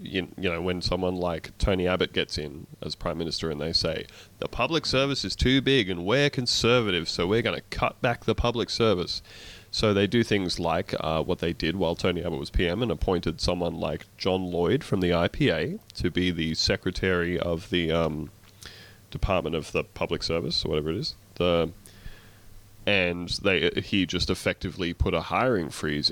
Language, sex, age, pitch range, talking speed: English, male, 20-39, 90-105 Hz, 190 wpm